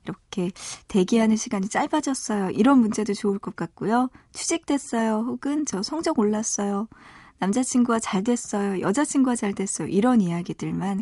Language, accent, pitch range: Korean, native, 190-245 Hz